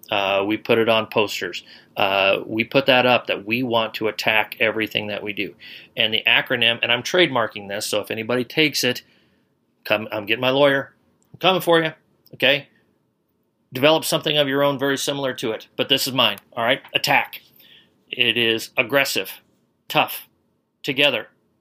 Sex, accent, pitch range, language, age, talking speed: male, American, 110-135 Hz, English, 40-59, 175 wpm